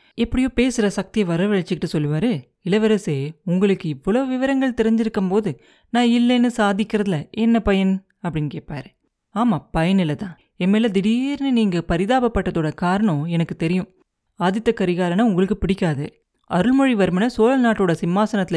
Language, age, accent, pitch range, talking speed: Tamil, 30-49, native, 160-220 Hz, 115 wpm